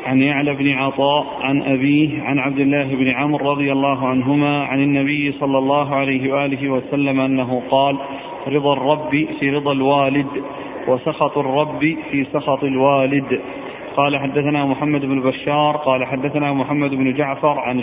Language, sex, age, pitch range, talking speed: Arabic, male, 40-59, 135-150 Hz, 150 wpm